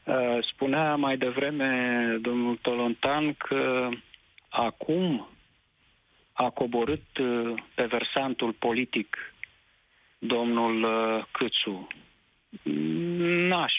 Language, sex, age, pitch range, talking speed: Romanian, male, 40-59, 115-145 Hz, 65 wpm